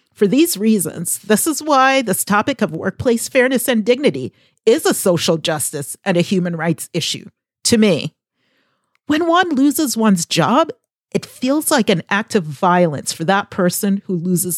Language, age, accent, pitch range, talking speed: English, 40-59, American, 180-245 Hz, 170 wpm